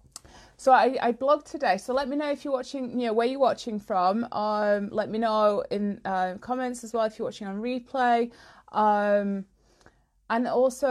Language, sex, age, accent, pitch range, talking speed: English, female, 20-39, British, 200-250 Hz, 195 wpm